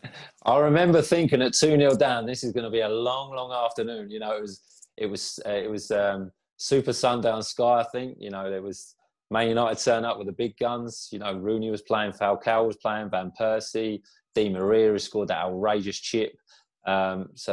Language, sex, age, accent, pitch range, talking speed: English, male, 20-39, British, 90-115 Hz, 210 wpm